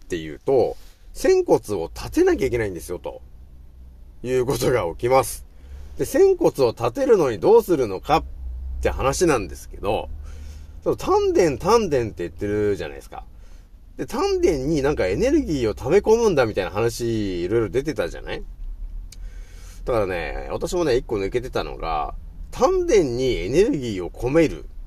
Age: 40-59